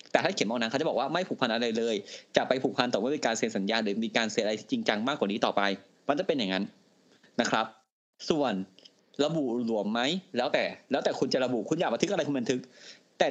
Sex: male